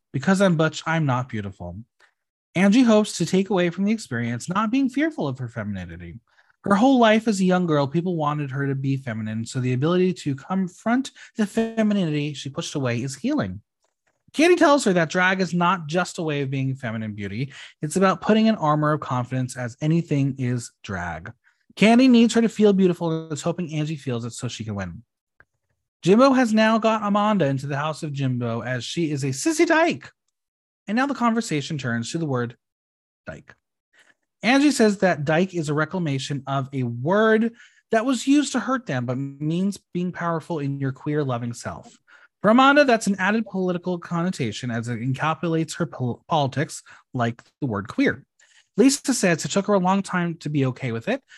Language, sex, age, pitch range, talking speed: English, male, 30-49, 130-205 Hz, 195 wpm